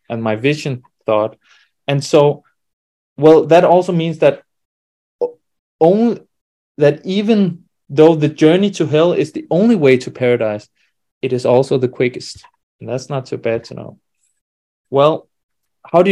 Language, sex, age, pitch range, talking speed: English, male, 30-49, 125-165 Hz, 150 wpm